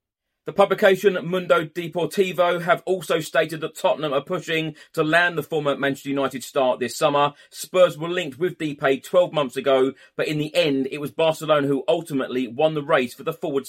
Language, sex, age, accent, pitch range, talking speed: English, male, 30-49, British, 135-165 Hz, 190 wpm